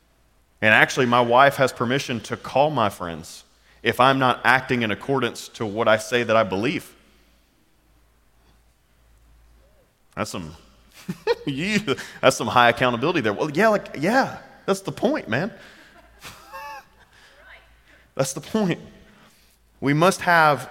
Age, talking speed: 30-49, 130 wpm